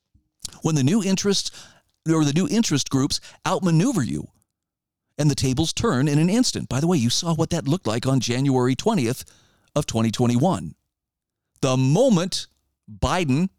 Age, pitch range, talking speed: 40-59, 120-170 Hz, 155 wpm